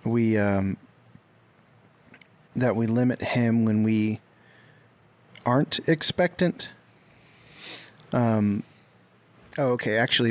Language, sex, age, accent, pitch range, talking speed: English, male, 30-49, American, 110-135 Hz, 75 wpm